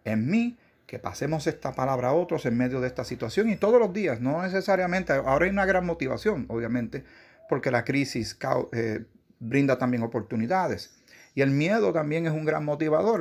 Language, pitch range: Spanish, 105-135 Hz